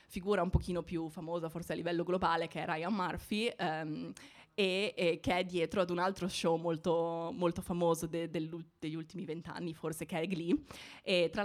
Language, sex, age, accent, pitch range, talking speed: Italian, female, 20-39, native, 165-180 Hz, 190 wpm